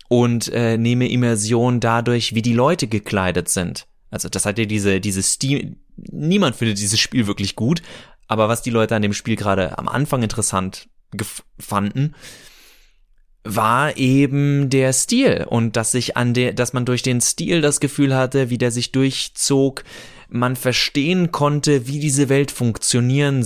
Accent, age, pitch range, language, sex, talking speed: German, 20-39, 110-135 Hz, German, male, 165 wpm